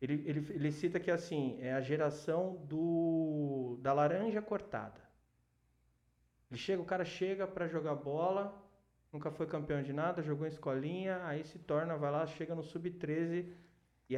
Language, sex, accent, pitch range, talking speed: Portuguese, male, Brazilian, 150-230 Hz, 165 wpm